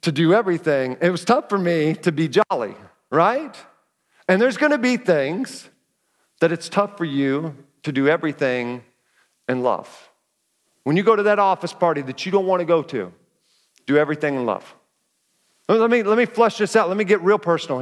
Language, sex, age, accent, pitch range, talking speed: English, male, 40-59, American, 140-195 Hz, 185 wpm